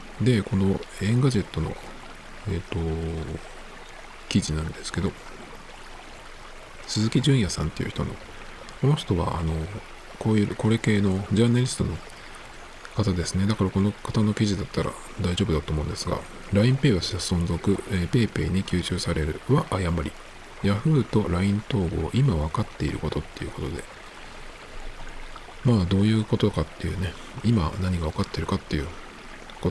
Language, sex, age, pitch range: Japanese, male, 50-69, 85-120 Hz